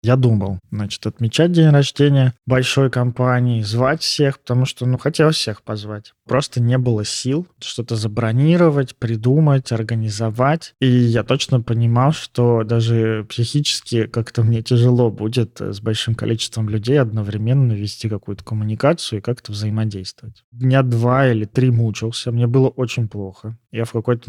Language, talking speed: Russian, 145 wpm